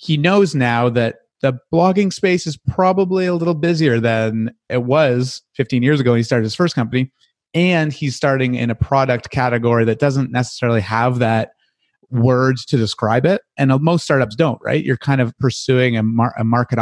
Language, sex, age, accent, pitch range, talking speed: English, male, 30-49, American, 115-140 Hz, 185 wpm